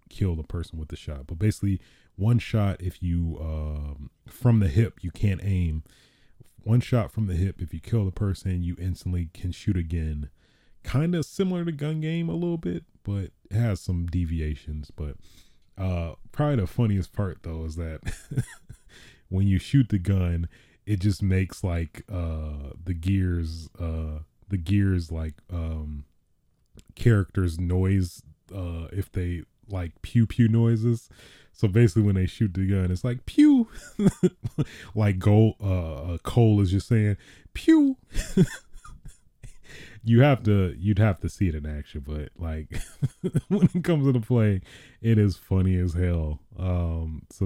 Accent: American